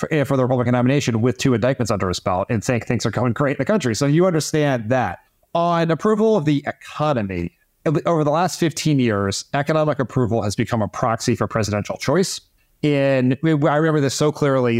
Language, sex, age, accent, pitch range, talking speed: English, male, 30-49, American, 115-155 Hz, 195 wpm